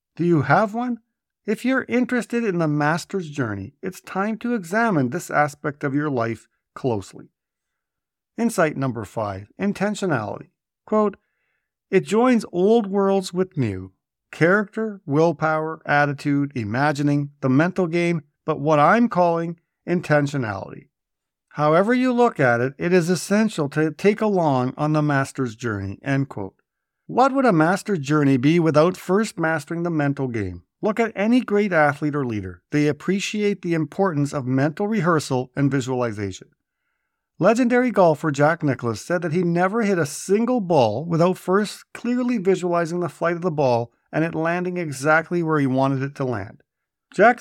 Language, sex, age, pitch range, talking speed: English, male, 50-69, 140-195 Hz, 155 wpm